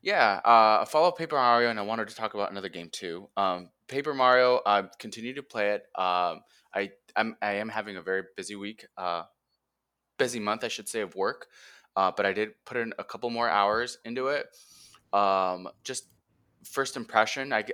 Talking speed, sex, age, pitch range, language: 190 wpm, male, 20-39, 95-125 Hz, English